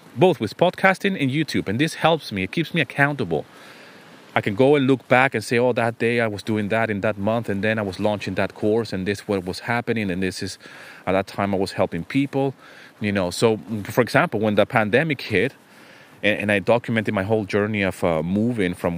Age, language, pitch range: 30-49, English, 95-115 Hz